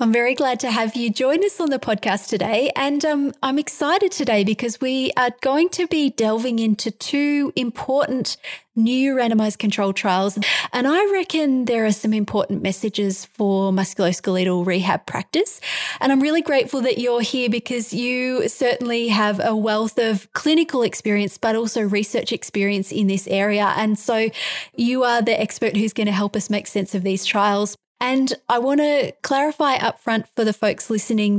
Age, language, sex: 20-39, English, female